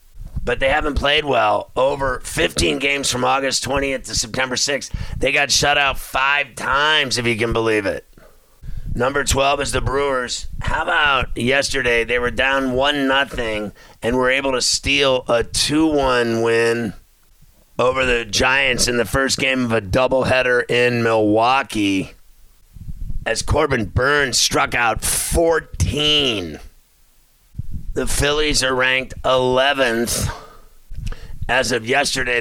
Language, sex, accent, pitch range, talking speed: English, male, American, 115-135 Hz, 130 wpm